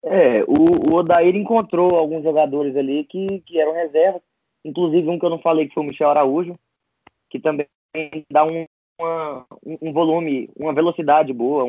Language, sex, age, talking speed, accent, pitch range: Portuguese, male, 20-39, 170 wpm, Brazilian, 145-175 Hz